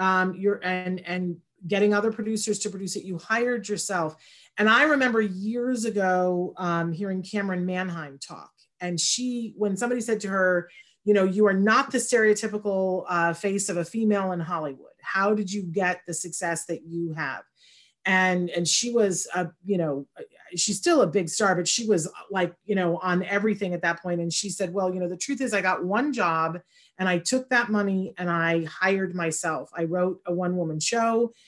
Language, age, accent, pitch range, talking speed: English, 40-59, American, 175-210 Hz, 200 wpm